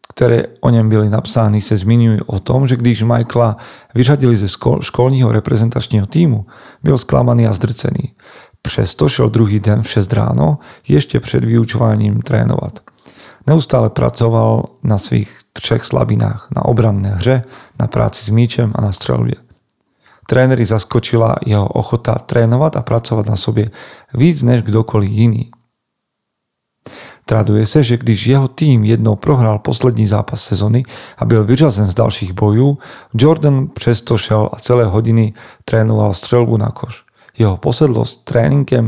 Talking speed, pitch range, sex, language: 140 wpm, 105-125 Hz, male, Slovak